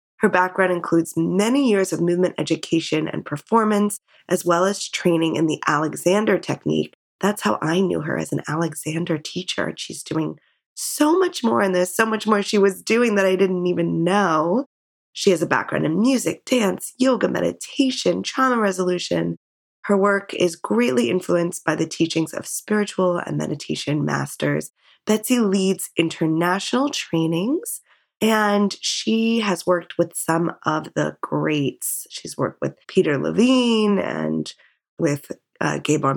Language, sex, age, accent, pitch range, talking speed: English, female, 20-39, American, 165-210 Hz, 150 wpm